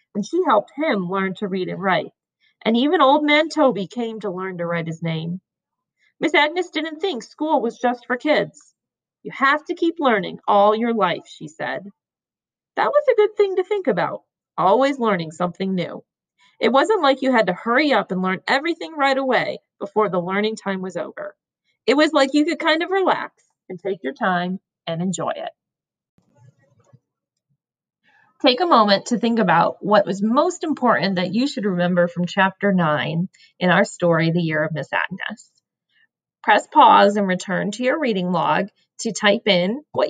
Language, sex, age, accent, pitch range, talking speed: English, female, 40-59, American, 190-275 Hz, 185 wpm